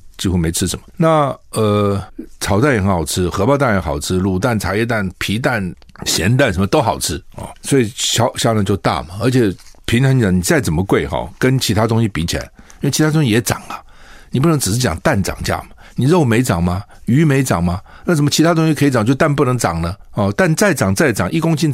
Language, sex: Chinese, male